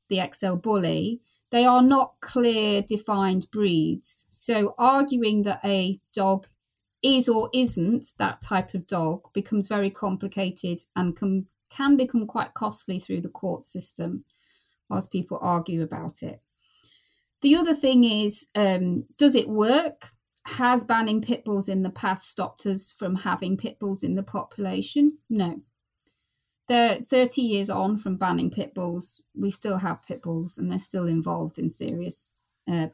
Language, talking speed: English, 155 wpm